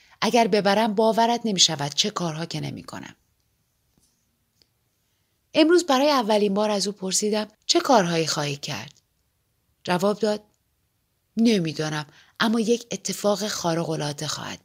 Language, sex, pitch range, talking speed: Persian, female, 160-225 Hz, 110 wpm